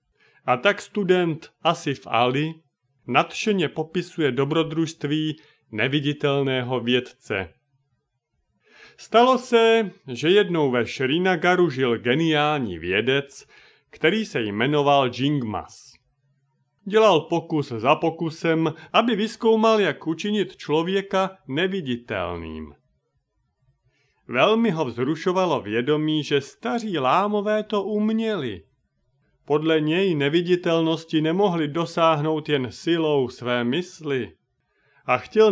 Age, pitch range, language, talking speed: 30-49, 135-185 Hz, Czech, 90 wpm